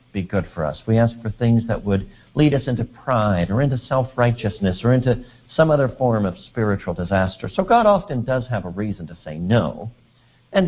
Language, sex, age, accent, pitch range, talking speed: English, male, 60-79, American, 95-150 Hz, 200 wpm